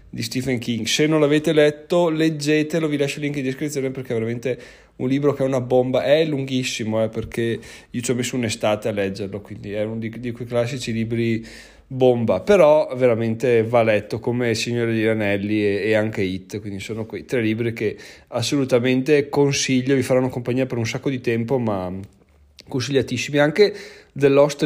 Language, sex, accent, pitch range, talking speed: Italian, male, native, 110-135 Hz, 185 wpm